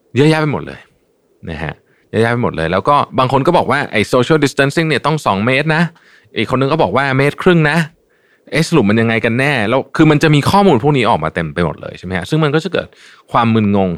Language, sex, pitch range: Thai, male, 90-135 Hz